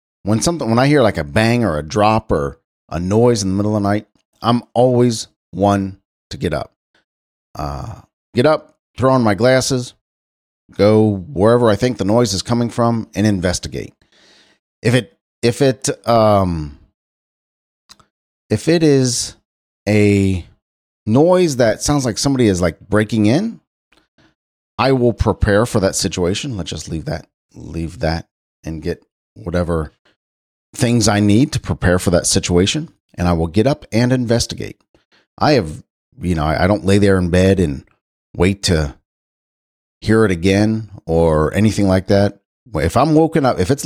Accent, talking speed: American, 160 wpm